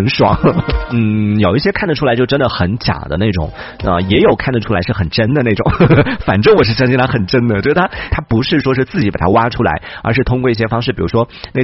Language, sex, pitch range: Chinese, male, 100-130 Hz